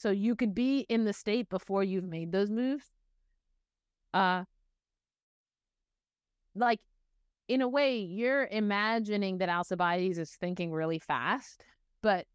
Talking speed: 125 wpm